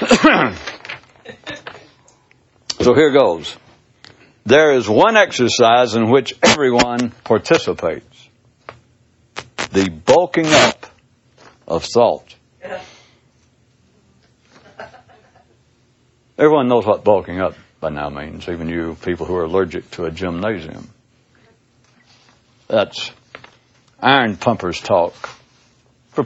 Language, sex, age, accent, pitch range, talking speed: English, male, 60-79, American, 100-125 Hz, 85 wpm